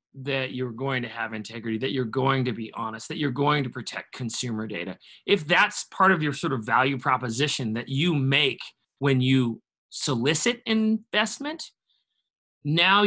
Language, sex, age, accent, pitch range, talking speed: English, male, 30-49, American, 125-175 Hz, 165 wpm